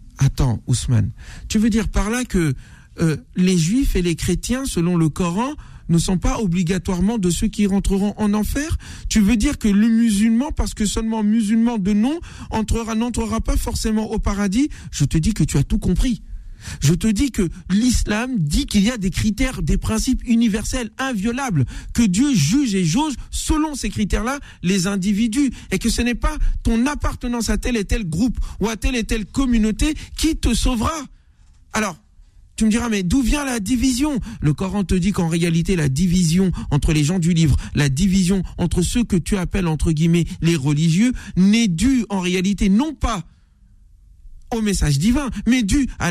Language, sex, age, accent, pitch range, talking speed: French, male, 50-69, French, 165-230 Hz, 185 wpm